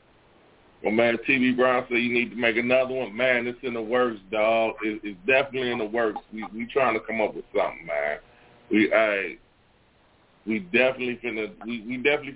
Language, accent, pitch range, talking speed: English, American, 105-130 Hz, 195 wpm